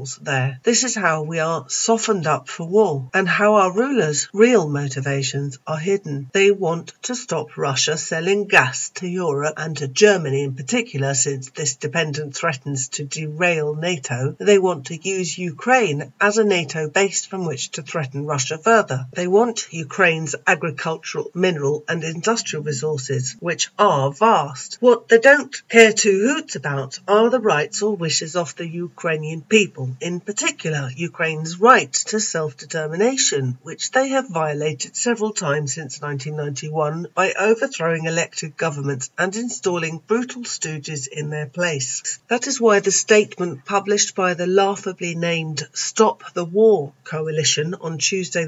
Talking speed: 150 wpm